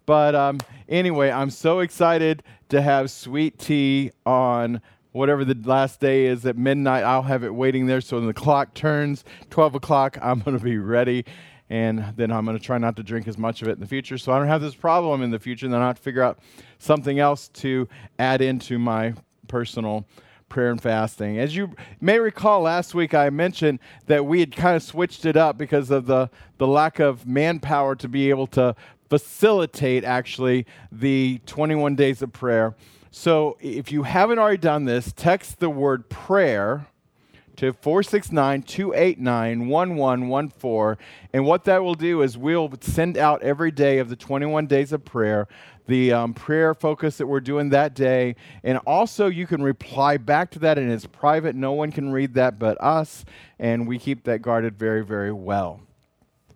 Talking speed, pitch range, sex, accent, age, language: 185 wpm, 120-150 Hz, male, American, 40-59, English